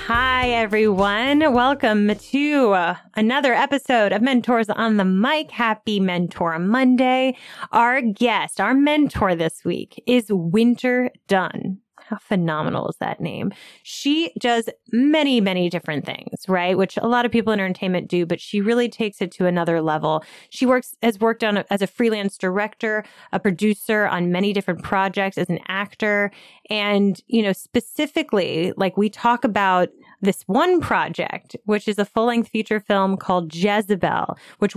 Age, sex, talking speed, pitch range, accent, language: 20-39, female, 155 wpm, 185-235 Hz, American, English